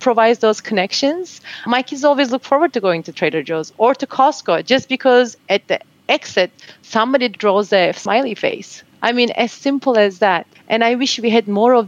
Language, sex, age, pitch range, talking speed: English, female, 30-49, 195-240 Hz, 195 wpm